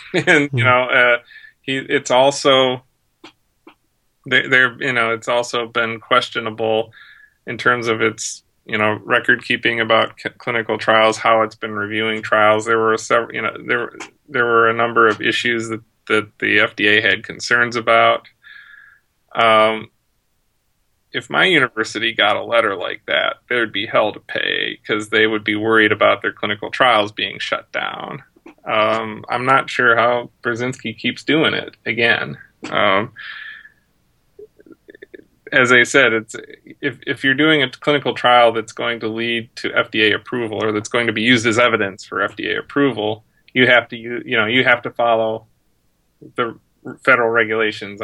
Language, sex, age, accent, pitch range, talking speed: English, male, 30-49, American, 110-125 Hz, 160 wpm